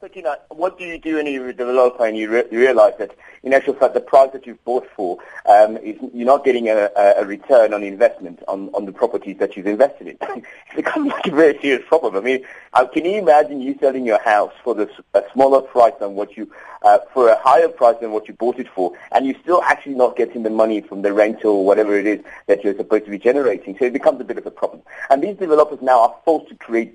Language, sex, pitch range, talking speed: English, male, 110-150 Hz, 260 wpm